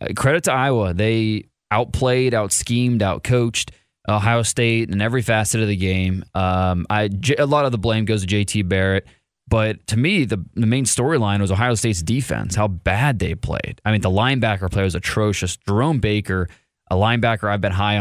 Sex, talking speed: male, 195 wpm